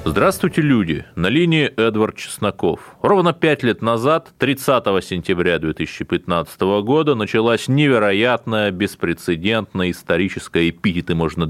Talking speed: 105 wpm